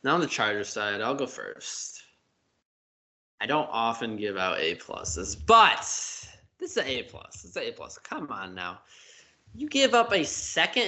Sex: male